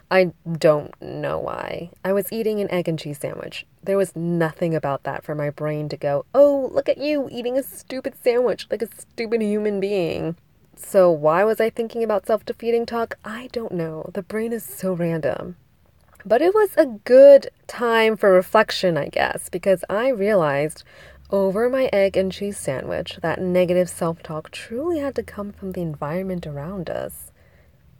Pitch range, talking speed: 160-215 Hz, 175 wpm